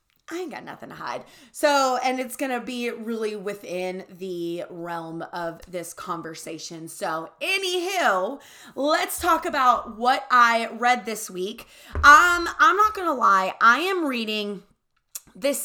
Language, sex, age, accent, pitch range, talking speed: English, female, 20-39, American, 210-295 Hz, 150 wpm